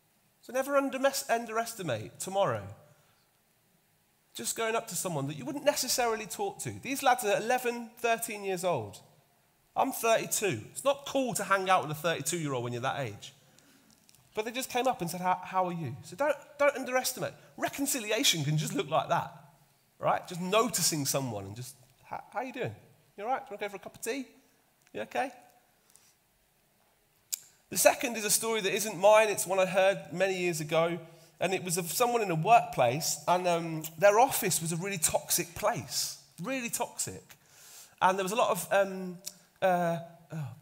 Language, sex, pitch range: English, male, 165-240 Hz